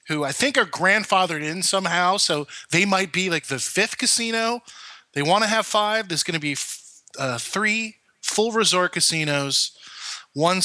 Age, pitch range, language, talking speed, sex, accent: 20-39, 130-175 Hz, English, 170 wpm, male, American